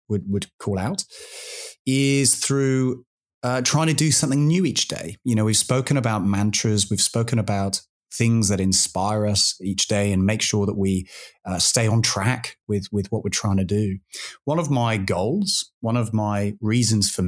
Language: English